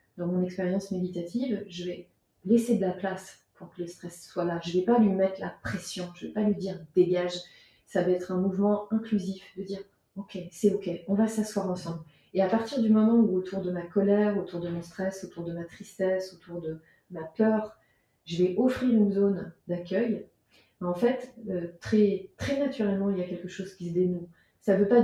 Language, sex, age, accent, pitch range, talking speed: French, female, 30-49, French, 175-205 Hz, 230 wpm